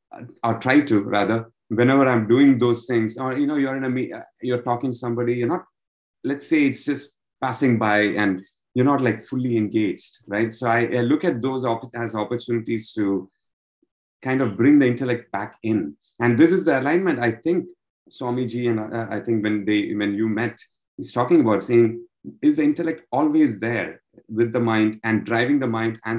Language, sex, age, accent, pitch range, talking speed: English, male, 30-49, Indian, 105-125 Hz, 195 wpm